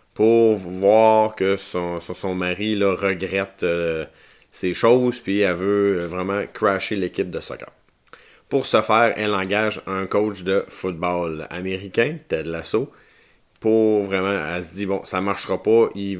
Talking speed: 155 wpm